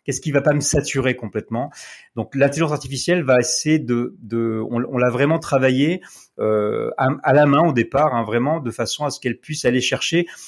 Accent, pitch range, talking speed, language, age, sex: French, 110-135 Hz, 205 wpm, French, 30-49, male